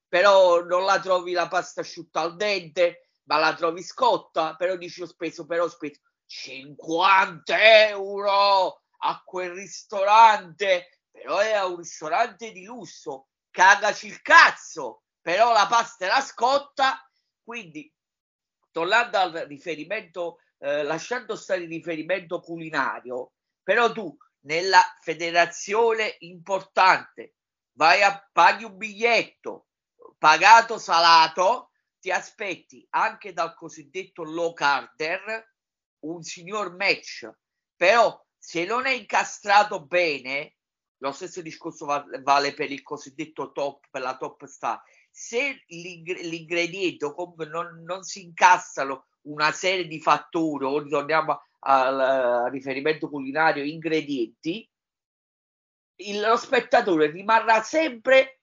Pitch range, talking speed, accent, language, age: 160-210 Hz, 115 wpm, native, Italian, 30-49